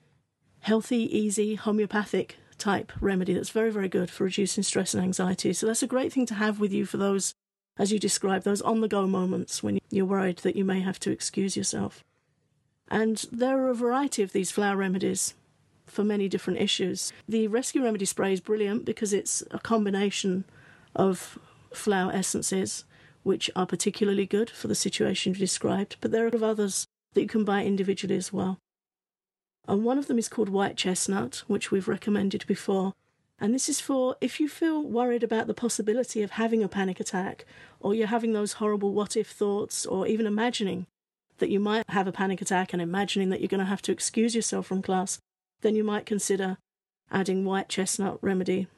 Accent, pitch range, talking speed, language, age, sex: British, 190-215 Hz, 185 wpm, English, 50-69, female